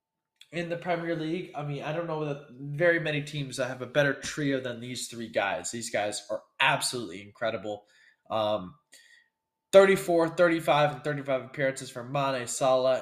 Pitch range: 135-190 Hz